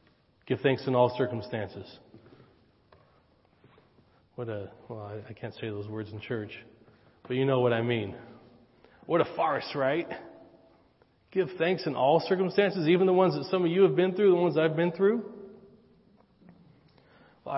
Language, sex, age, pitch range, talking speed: English, male, 40-59, 110-145 Hz, 160 wpm